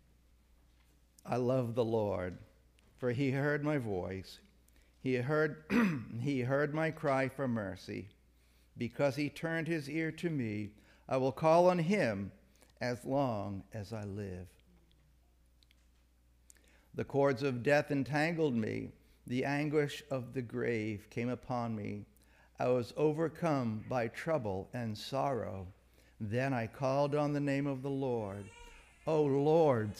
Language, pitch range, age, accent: English, 100-150 Hz, 60-79, American